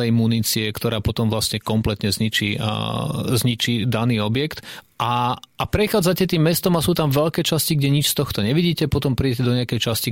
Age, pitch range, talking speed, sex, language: 30-49, 110-130 Hz, 180 wpm, male, Slovak